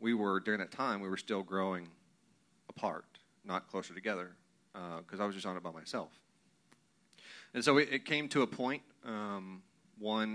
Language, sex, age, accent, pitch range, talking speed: English, male, 30-49, American, 95-105 Hz, 185 wpm